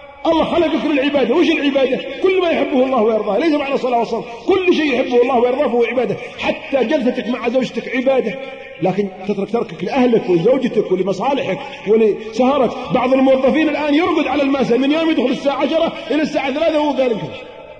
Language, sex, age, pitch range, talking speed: Arabic, male, 40-59, 210-275 Hz, 165 wpm